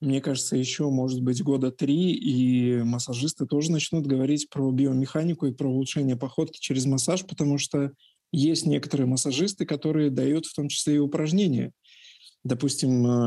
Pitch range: 130-160 Hz